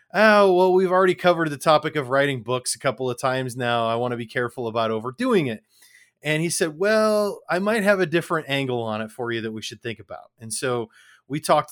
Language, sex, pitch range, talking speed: English, male, 120-155 Hz, 235 wpm